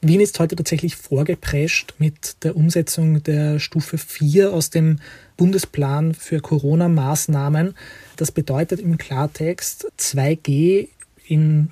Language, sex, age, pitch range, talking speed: German, male, 30-49, 150-170 Hz, 115 wpm